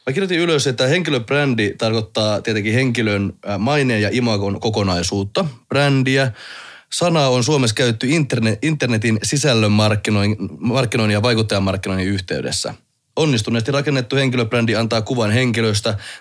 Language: Finnish